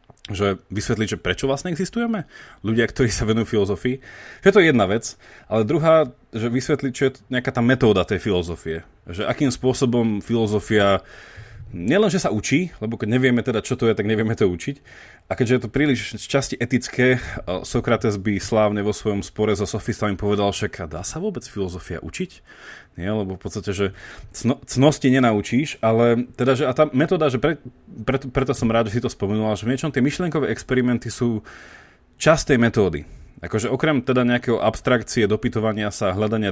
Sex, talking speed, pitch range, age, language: male, 180 wpm, 105-130 Hz, 30-49, Slovak